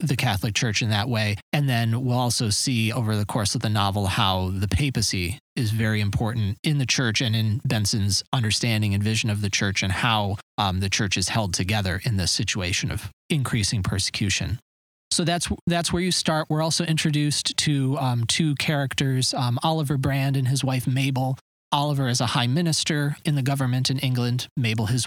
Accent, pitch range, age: American, 110-140 Hz, 30-49